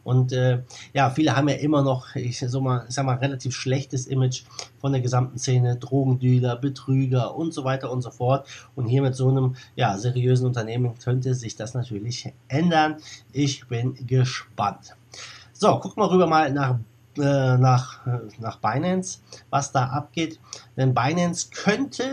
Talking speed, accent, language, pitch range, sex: 165 wpm, German, German, 125-150 Hz, male